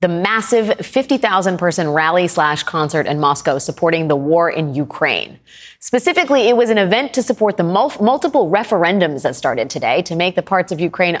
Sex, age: female, 30-49